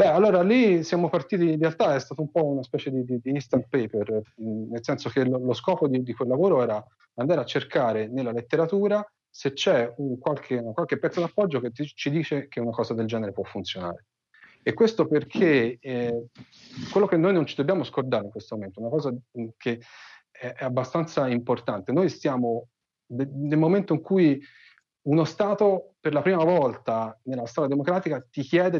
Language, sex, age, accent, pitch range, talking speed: Italian, male, 30-49, native, 115-160 Hz, 190 wpm